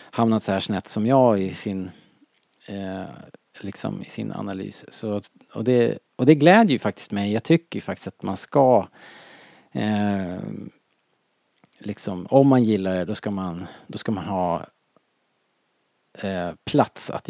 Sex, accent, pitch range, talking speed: male, Norwegian, 100-130 Hz, 155 wpm